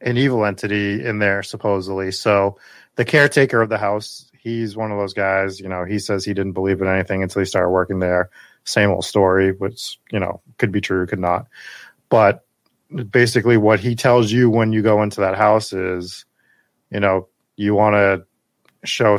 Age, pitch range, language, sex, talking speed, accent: 30-49, 100-120 Hz, English, male, 190 wpm, American